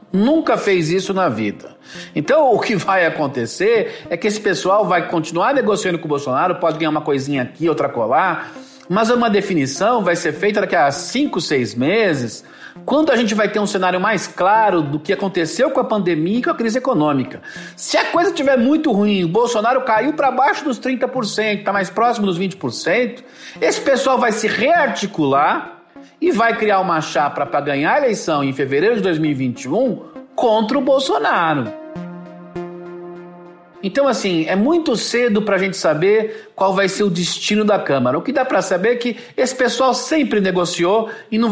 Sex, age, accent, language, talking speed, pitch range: male, 50-69, Brazilian, Portuguese, 180 wpm, 175-245 Hz